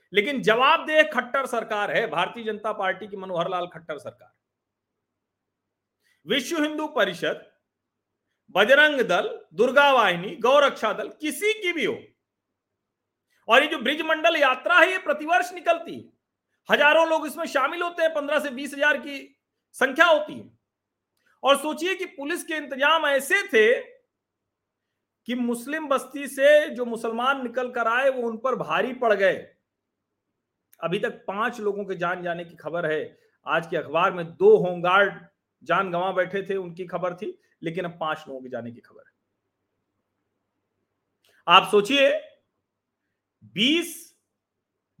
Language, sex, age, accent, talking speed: Hindi, male, 40-59, native, 145 wpm